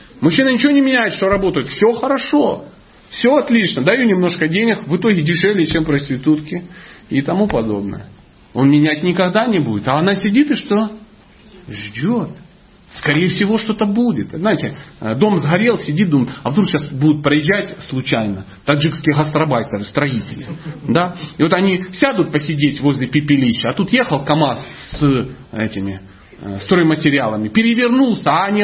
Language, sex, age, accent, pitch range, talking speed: Russian, male, 40-59, native, 150-225 Hz, 140 wpm